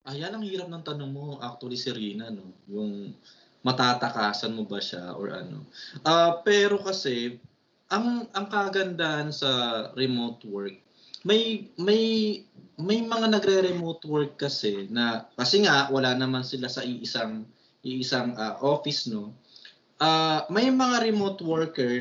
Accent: native